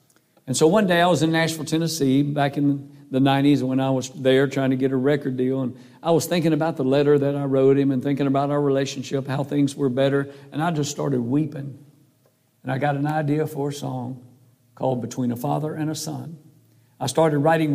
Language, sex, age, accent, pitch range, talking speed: English, male, 60-79, American, 135-155 Hz, 225 wpm